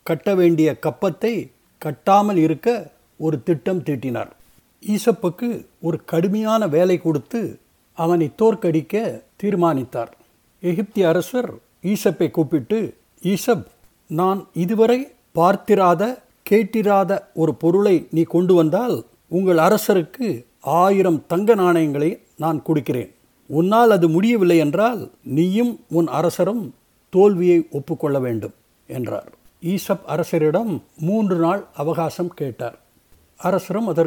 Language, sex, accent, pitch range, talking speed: Tamil, male, native, 160-195 Hz, 95 wpm